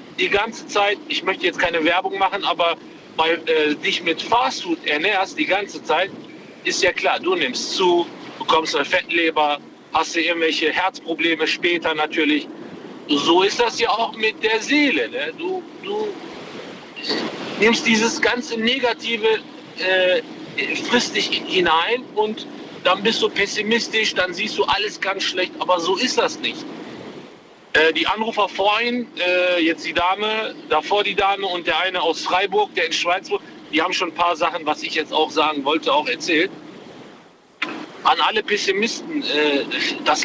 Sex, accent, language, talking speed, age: male, German, German, 155 wpm, 50-69